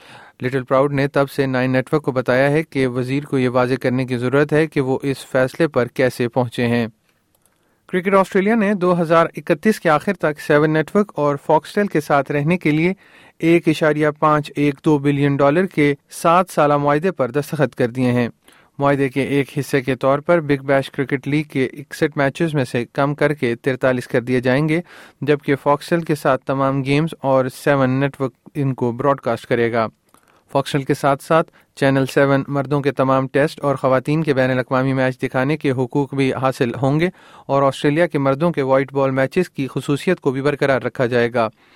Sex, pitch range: male, 130-150 Hz